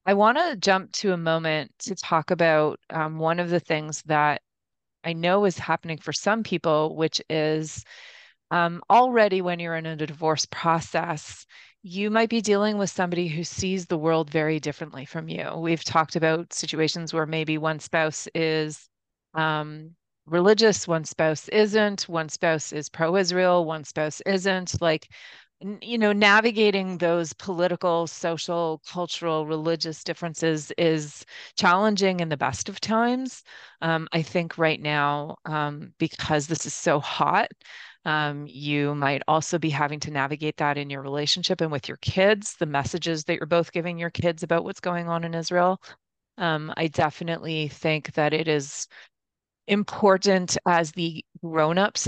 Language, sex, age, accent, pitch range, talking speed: English, female, 30-49, American, 155-180 Hz, 160 wpm